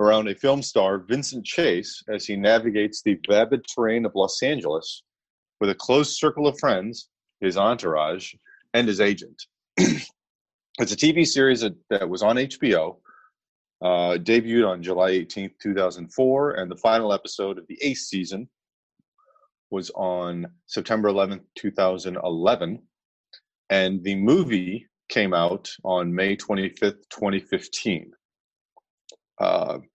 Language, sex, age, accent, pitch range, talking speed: English, male, 30-49, American, 95-120 Hz, 130 wpm